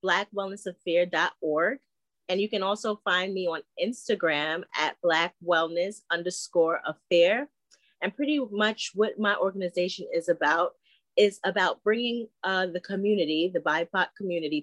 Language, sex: English, female